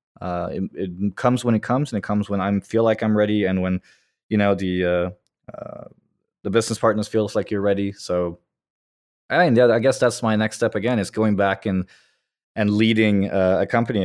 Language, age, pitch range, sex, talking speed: English, 20-39, 100-120 Hz, male, 210 wpm